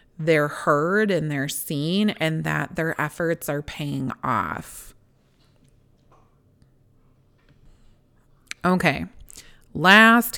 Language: English